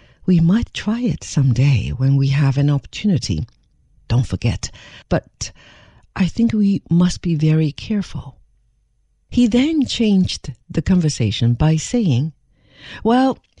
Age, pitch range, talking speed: 60-79, 130-185 Hz, 130 wpm